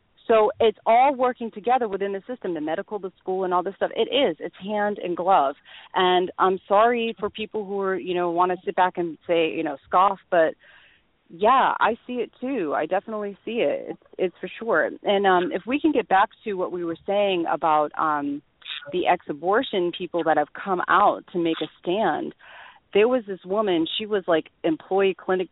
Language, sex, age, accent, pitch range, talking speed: English, female, 30-49, American, 160-210 Hz, 205 wpm